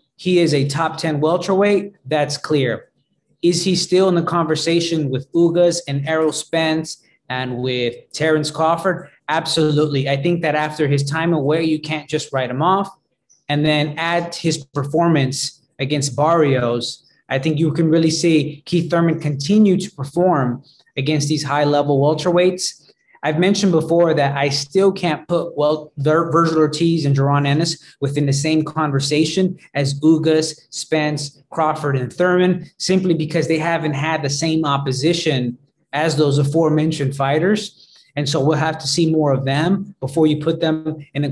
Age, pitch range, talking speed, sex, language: 20-39, 145-165 Hz, 160 wpm, male, English